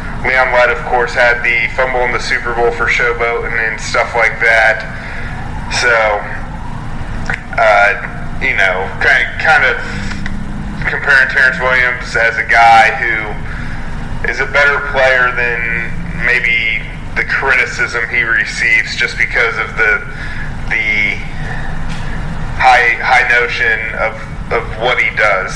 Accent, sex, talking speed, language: American, male, 130 wpm, English